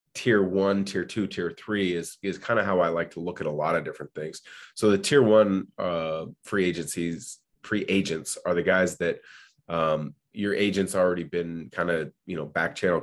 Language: English